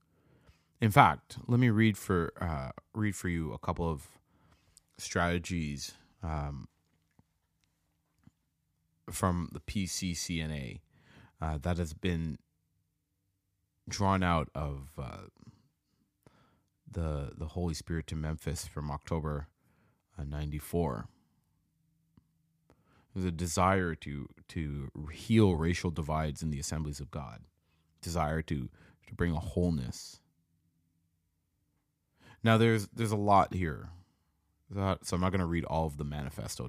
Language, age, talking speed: English, 30-49, 115 wpm